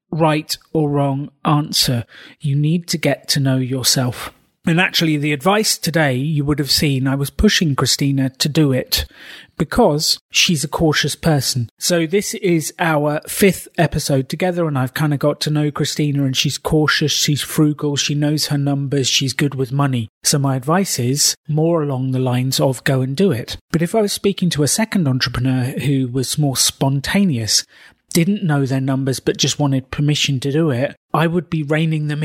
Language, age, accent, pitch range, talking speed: English, 30-49, British, 135-160 Hz, 190 wpm